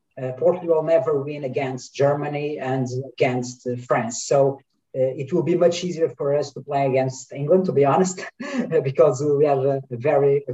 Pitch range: 130-165 Hz